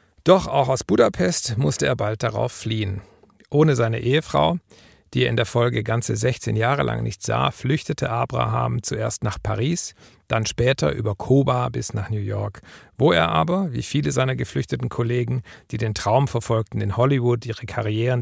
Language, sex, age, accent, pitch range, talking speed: German, male, 50-69, German, 110-140 Hz, 170 wpm